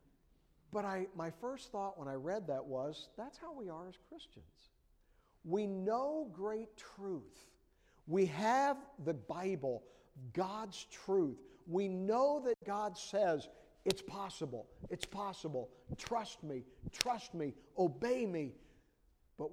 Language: English